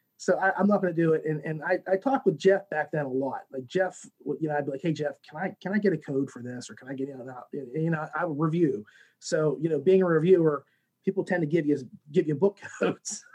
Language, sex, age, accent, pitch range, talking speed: English, male, 30-49, American, 145-185 Hz, 290 wpm